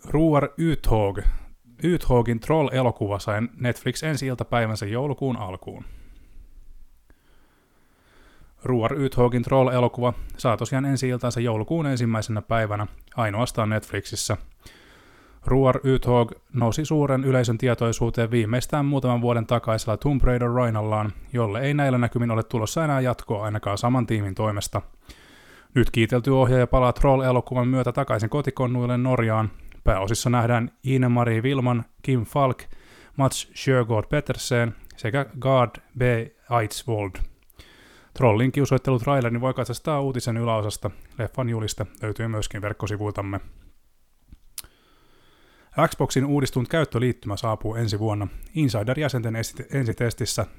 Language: Finnish